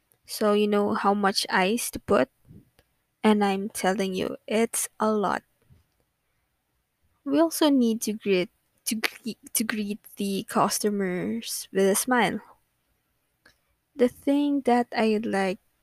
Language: English